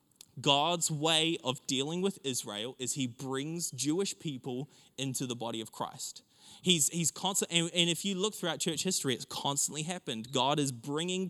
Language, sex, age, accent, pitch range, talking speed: English, male, 20-39, Australian, 135-185 Hz, 175 wpm